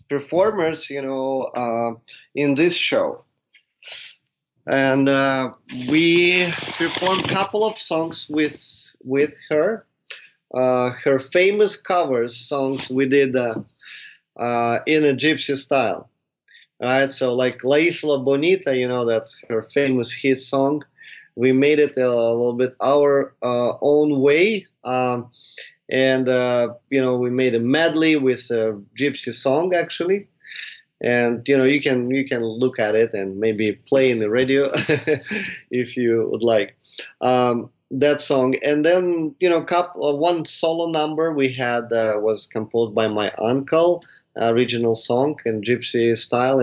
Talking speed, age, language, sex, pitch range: 145 wpm, 20-39, English, male, 120-150 Hz